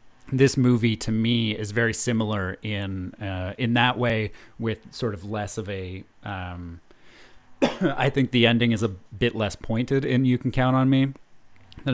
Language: English